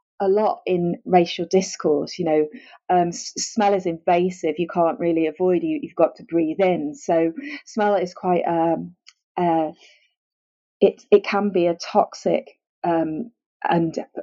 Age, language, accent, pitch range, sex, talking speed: 30-49, English, British, 170-210 Hz, female, 155 wpm